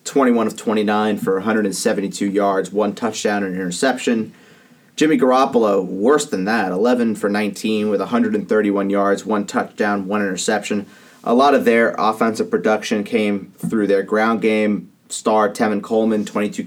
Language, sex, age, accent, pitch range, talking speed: English, male, 30-49, American, 100-115 Hz, 145 wpm